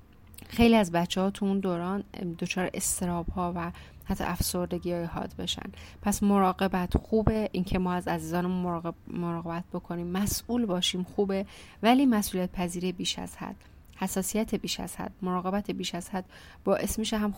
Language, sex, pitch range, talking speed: Persian, female, 180-235 Hz, 160 wpm